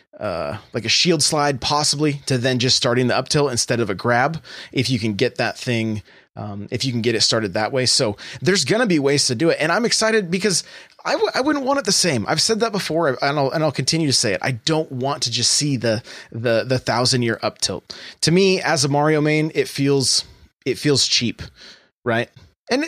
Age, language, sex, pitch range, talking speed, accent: 20-39, English, male, 125-165 Hz, 240 wpm, American